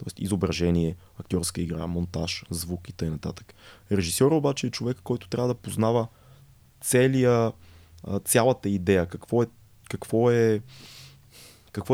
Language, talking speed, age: Bulgarian, 120 wpm, 20-39